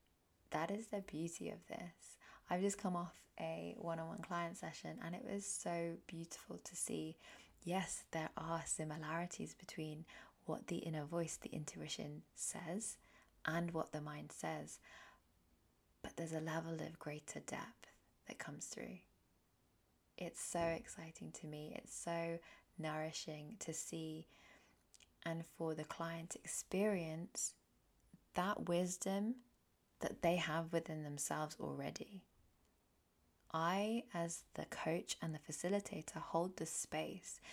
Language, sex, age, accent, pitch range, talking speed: English, female, 20-39, British, 150-175 Hz, 135 wpm